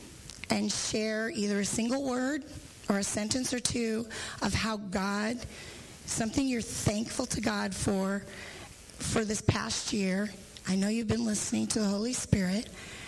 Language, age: English, 30-49